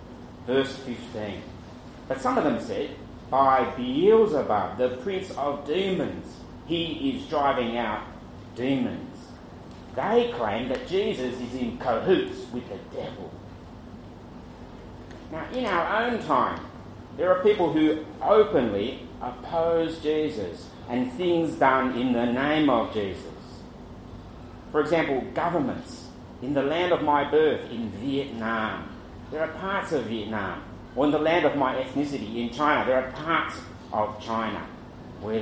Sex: male